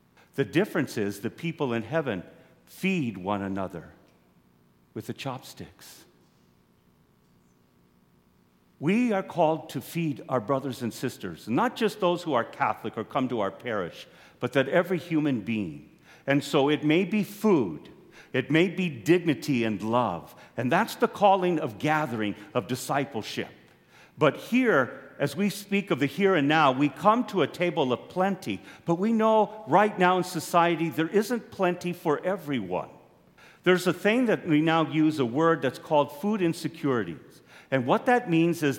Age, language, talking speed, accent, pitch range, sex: 50-69, English, 160 wpm, American, 130-185 Hz, male